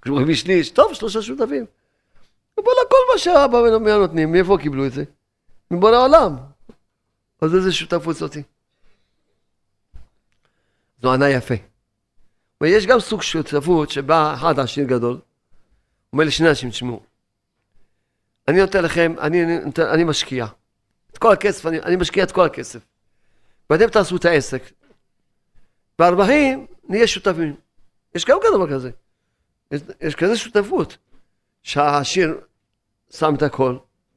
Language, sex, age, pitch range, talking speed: Hebrew, male, 50-69, 125-185 Hz, 125 wpm